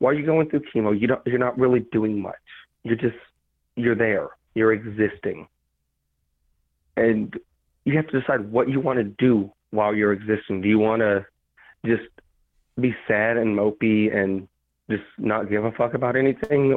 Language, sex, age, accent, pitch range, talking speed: English, male, 30-49, American, 100-120 Hz, 185 wpm